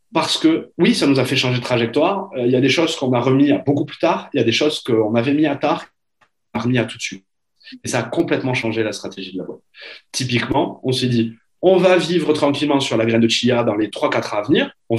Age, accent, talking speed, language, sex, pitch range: 20-39, French, 270 wpm, French, male, 115-150 Hz